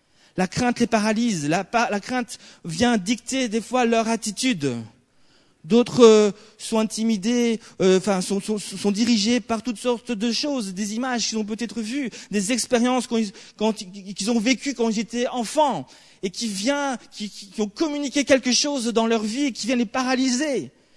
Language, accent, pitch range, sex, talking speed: French, French, 205-255 Hz, male, 175 wpm